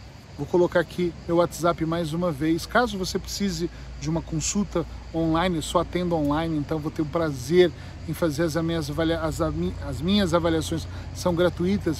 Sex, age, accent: male, 40-59, Brazilian